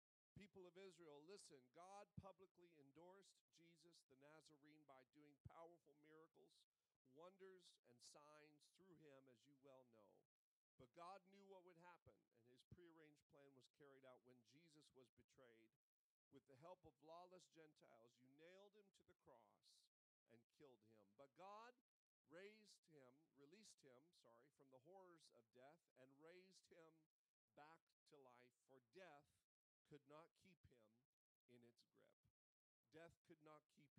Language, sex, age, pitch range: English, male, 40-59, 130-180 Hz